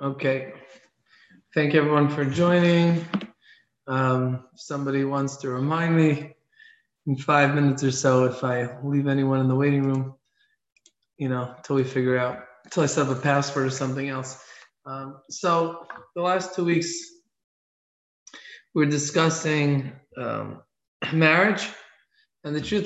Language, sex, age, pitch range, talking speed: English, male, 20-39, 140-170 Hz, 140 wpm